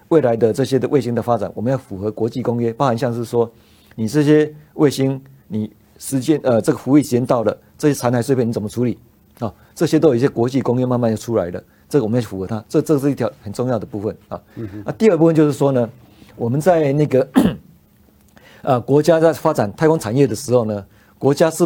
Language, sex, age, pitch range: Chinese, male, 50-69, 110-145 Hz